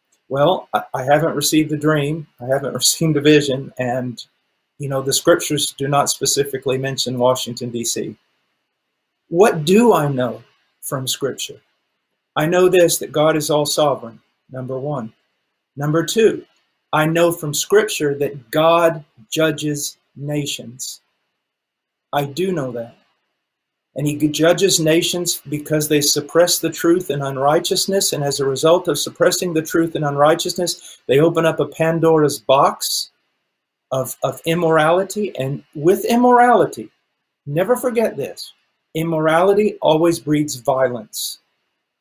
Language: English